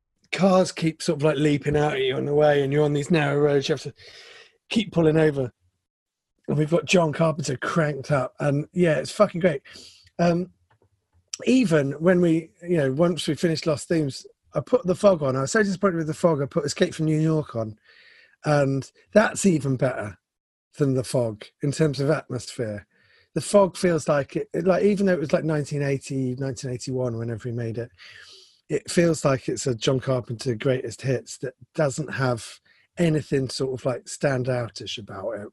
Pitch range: 125-165 Hz